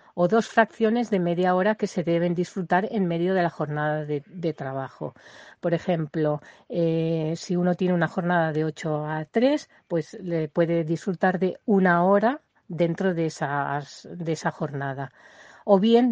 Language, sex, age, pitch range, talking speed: Spanish, female, 40-59, 165-210 Hz, 170 wpm